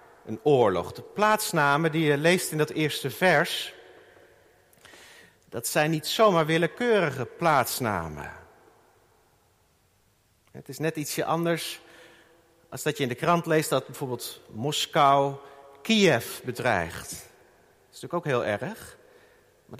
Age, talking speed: 50-69, 125 wpm